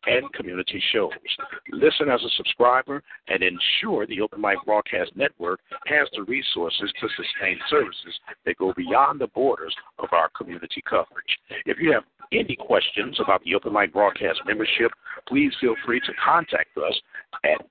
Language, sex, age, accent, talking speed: English, male, 60-79, American, 160 wpm